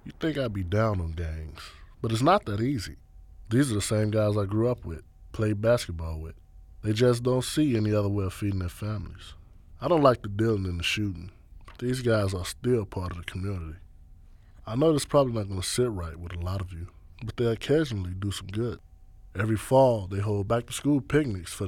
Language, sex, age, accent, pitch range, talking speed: English, male, 20-39, American, 85-120 Hz, 220 wpm